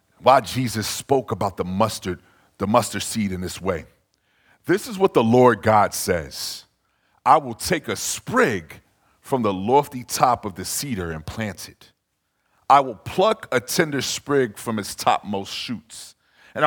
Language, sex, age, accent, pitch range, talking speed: English, male, 50-69, American, 95-135 Hz, 160 wpm